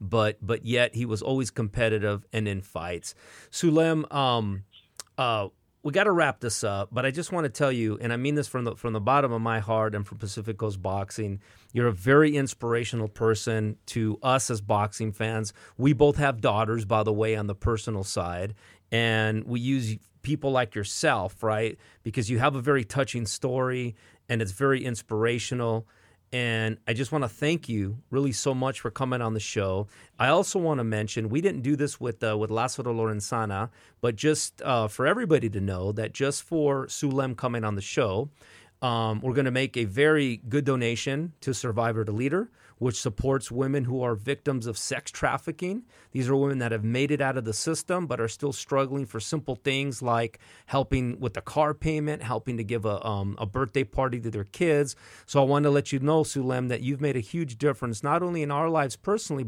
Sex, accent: male, American